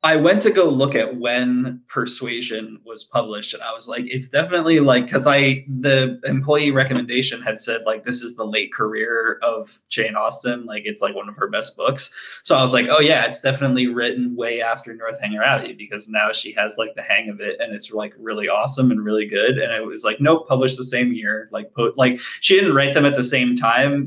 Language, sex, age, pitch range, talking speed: English, male, 20-39, 110-135 Hz, 225 wpm